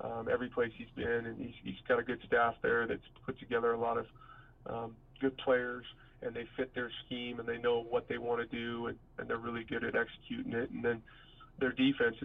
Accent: American